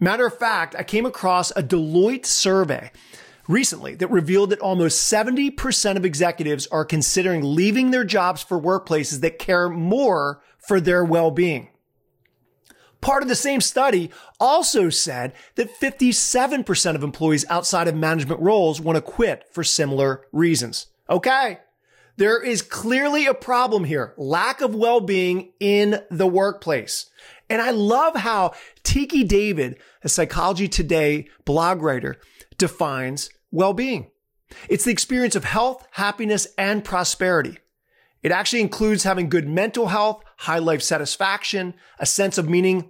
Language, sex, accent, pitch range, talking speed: English, male, American, 165-220 Hz, 140 wpm